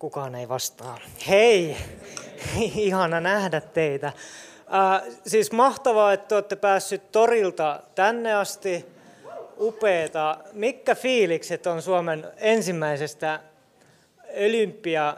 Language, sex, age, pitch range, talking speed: Finnish, male, 20-39, 165-230 Hz, 90 wpm